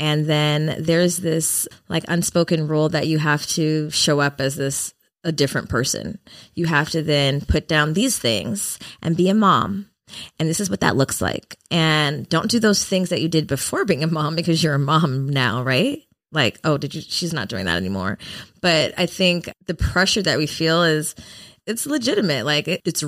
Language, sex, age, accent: English, female, 20-39, American